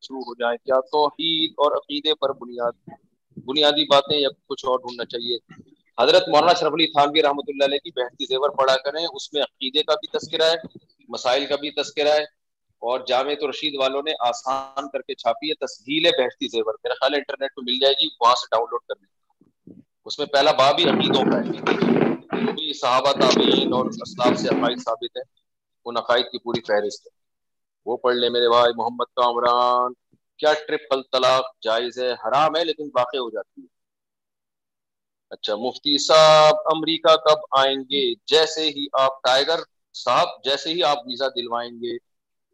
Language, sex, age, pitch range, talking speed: Urdu, male, 40-59, 125-160 Hz, 180 wpm